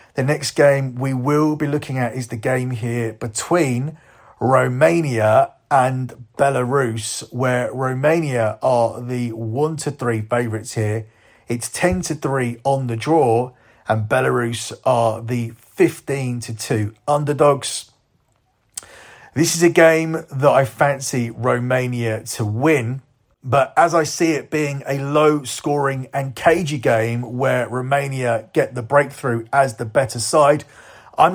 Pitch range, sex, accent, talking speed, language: 120-150 Hz, male, British, 130 wpm, English